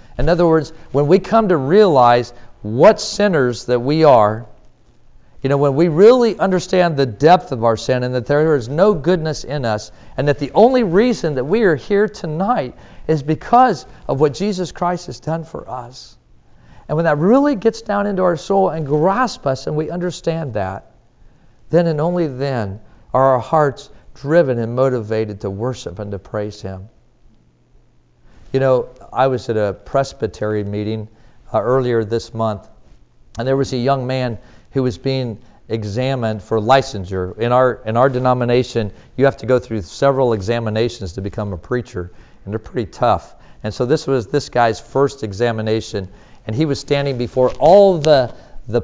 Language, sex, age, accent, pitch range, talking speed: English, male, 50-69, American, 115-160 Hz, 175 wpm